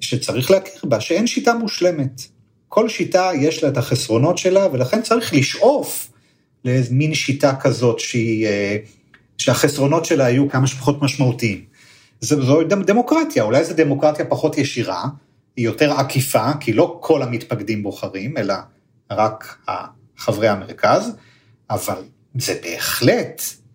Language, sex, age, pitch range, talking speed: Hebrew, male, 40-59, 115-150 Hz, 125 wpm